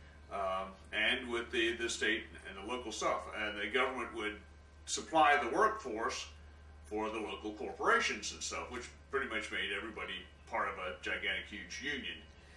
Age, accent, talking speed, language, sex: 40-59, American, 160 wpm, English, male